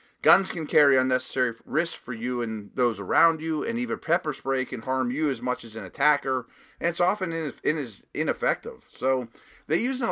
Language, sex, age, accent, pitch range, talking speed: English, male, 30-49, American, 120-160 Hz, 195 wpm